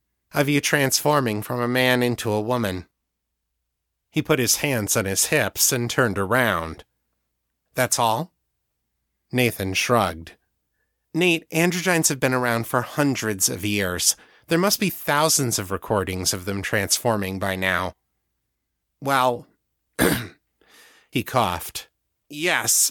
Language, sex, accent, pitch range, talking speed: English, male, American, 105-155 Hz, 125 wpm